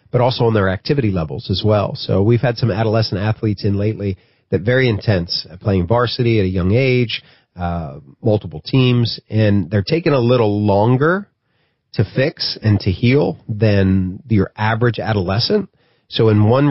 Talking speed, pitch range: 165 wpm, 100-125 Hz